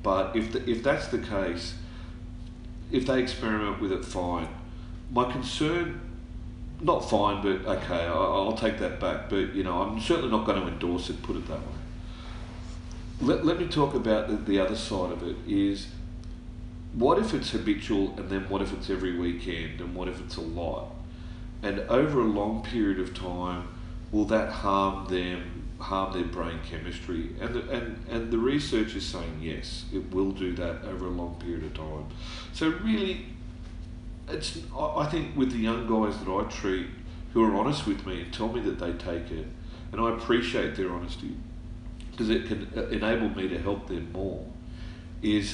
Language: English